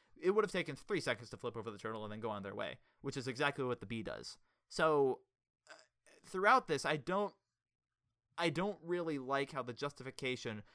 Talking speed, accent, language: 205 wpm, American, English